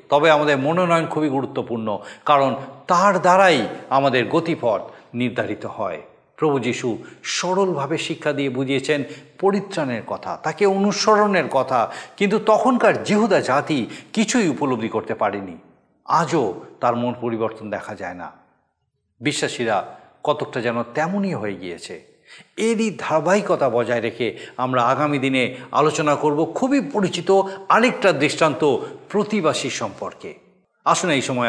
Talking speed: 120 wpm